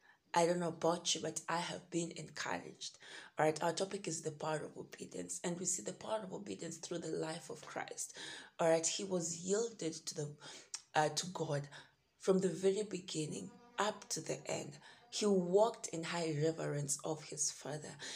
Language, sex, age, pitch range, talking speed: English, female, 20-39, 160-190 Hz, 185 wpm